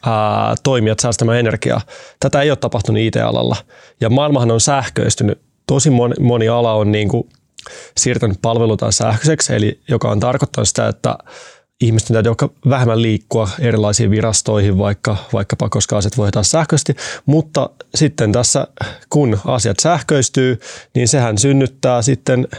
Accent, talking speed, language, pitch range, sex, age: native, 135 wpm, Finnish, 105-130 Hz, male, 20-39